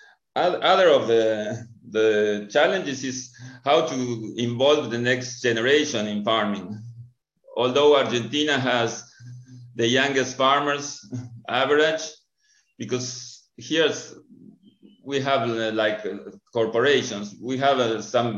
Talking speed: 100 wpm